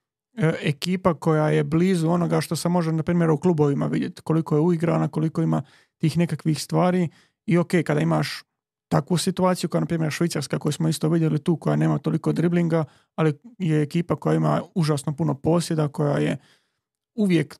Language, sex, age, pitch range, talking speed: Croatian, male, 30-49, 155-170 Hz, 175 wpm